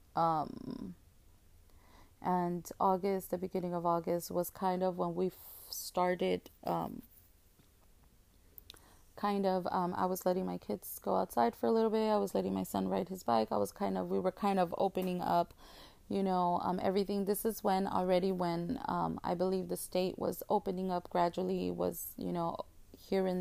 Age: 20-39